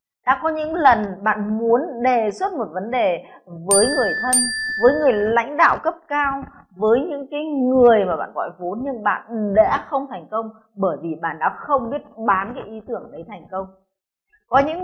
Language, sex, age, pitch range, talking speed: Vietnamese, female, 20-39, 195-275 Hz, 200 wpm